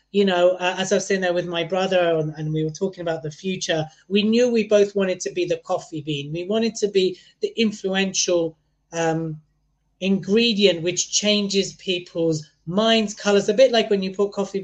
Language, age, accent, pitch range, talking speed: English, 30-49, British, 165-210 Hz, 200 wpm